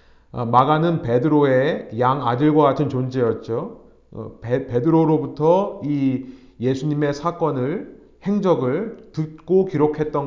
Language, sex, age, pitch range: Korean, male, 30-49, 125-175 Hz